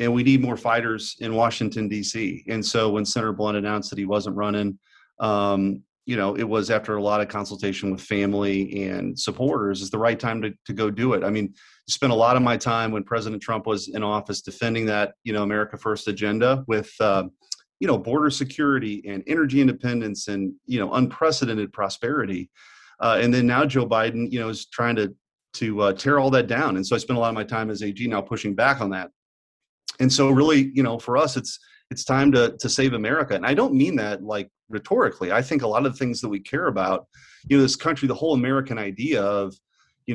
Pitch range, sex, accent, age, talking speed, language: 105-125 Hz, male, American, 40-59, 225 wpm, English